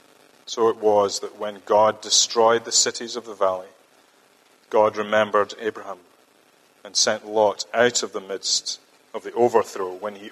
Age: 40-59